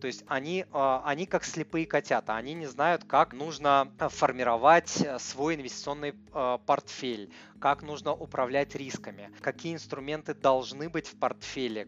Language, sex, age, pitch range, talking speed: Russian, male, 20-39, 135-160 Hz, 130 wpm